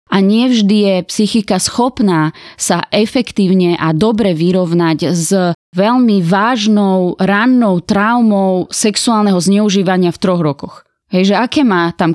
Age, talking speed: 20-39, 125 wpm